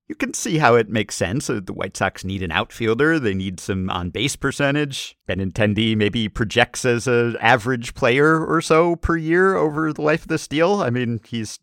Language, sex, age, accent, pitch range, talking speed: English, male, 50-69, American, 100-145 Hz, 195 wpm